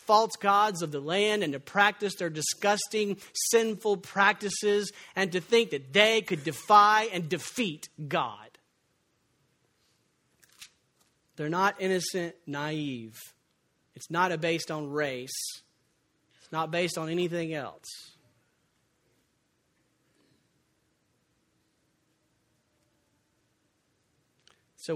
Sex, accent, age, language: male, American, 40-59, English